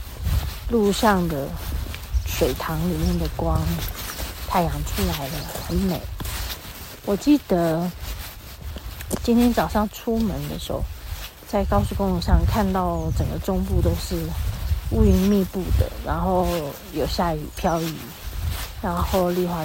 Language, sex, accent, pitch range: Chinese, female, native, 130-210 Hz